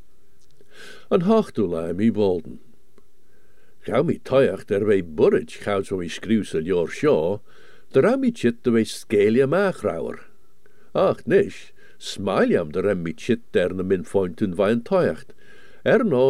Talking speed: 135 wpm